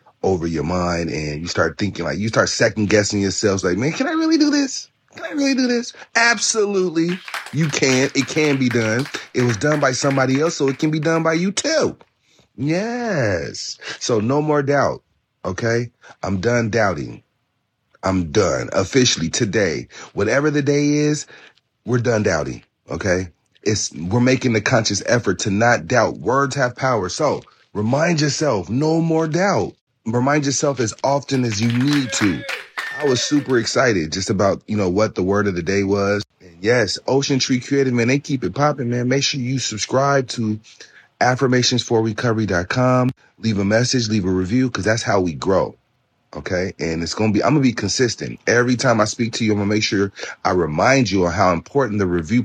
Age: 30-49